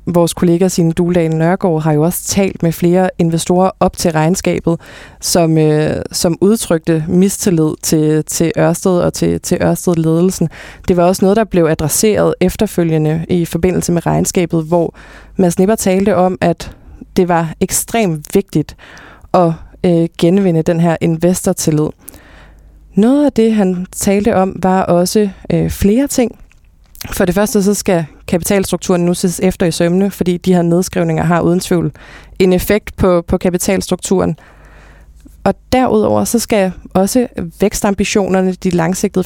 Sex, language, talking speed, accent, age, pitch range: female, Danish, 145 wpm, native, 20-39, 170-190 Hz